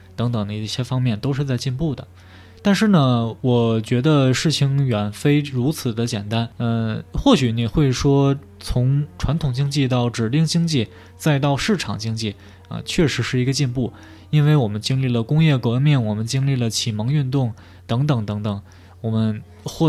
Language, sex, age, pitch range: Chinese, male, 20-39, 110-150 Hz